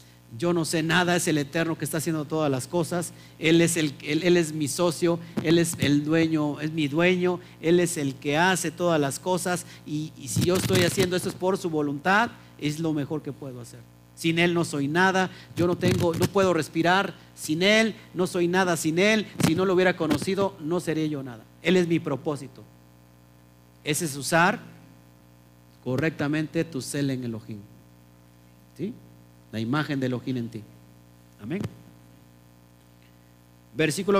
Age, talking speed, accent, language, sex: 50-69, 180 wpm, Mexican, Spanish, male